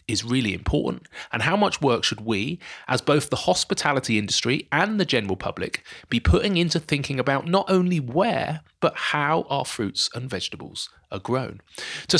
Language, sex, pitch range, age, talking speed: English, male, 115-165 Hz, 30-49, 170 wpm